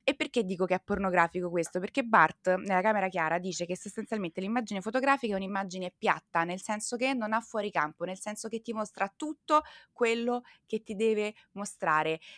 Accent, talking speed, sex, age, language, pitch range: native, 185 wpm, female, 20-39, Italian, 185-240 Hz